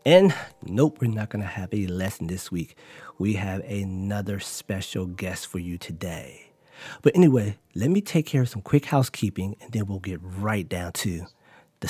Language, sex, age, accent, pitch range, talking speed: English, male, 40-59, American, 100-145 Hz, 185 wpm